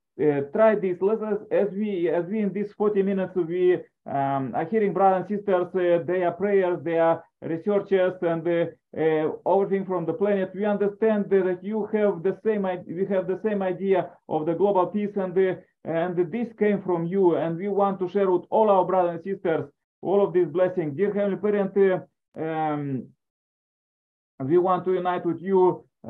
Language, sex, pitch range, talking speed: English, male, 170-200 Hz, 190 wpm